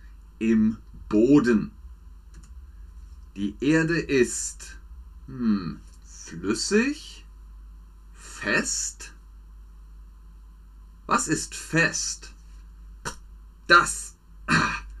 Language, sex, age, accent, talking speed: German, male, 30-49, German, 50 wpm